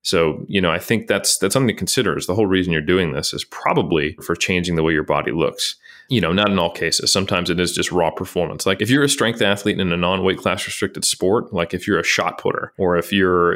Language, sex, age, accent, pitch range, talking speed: English, male, 30-49, American, 90-105 Hz, 260 wpm